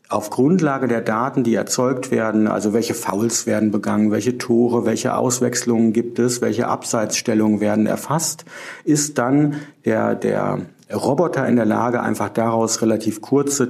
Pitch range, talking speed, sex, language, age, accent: 115-125 Hz, 150 wpm, male, German, 50-69, German